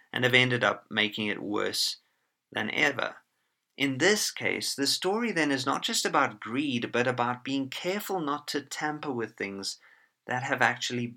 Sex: male